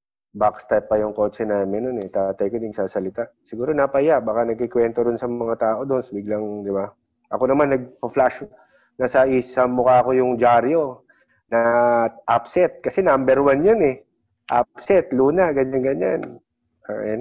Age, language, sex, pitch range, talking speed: 20-39, Filipino, male, 110-130 Hz, 165 wpm